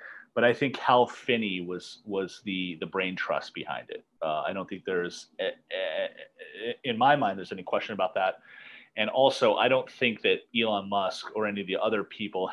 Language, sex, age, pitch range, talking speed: English, male, 30-49, 90-125 Hz, 190 wpm